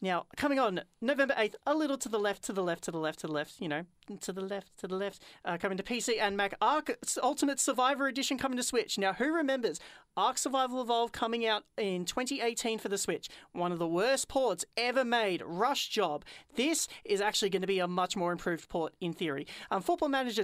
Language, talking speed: English, 230 wpm